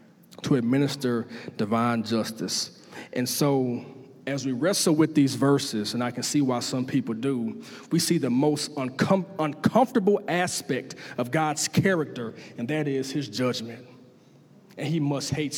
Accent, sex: American, male